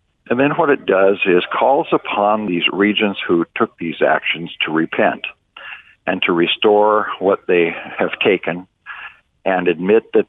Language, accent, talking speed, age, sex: English, American, 150 wpm, 60-79, male